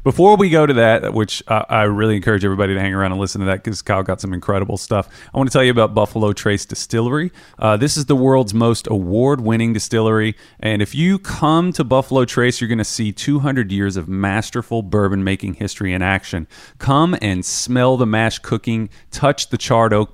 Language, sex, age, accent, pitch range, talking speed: English, male, 30-49, American, 100-135 Hz, 215 wpm